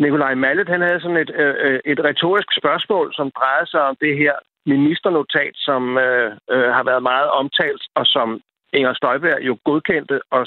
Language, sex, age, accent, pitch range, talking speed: Danish, male, 60-79, native, 140-210 Hz, 170 wpm